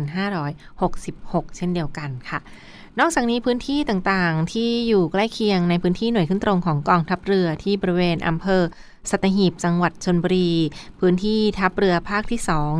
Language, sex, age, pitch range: Thai, female, 20-39, 165-200 Hz